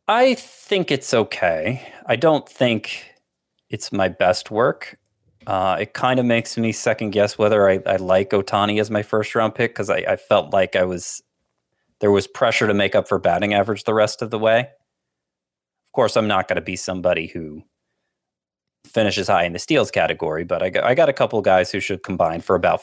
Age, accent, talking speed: 30-49, American, 210 wpm